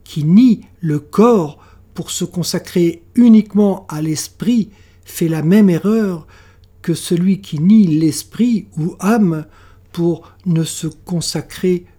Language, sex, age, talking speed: French, male, 60-79, 125 wpm